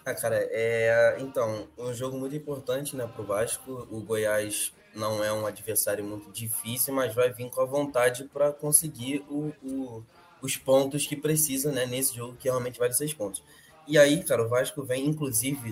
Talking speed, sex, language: 185 wpm, male, Portuguese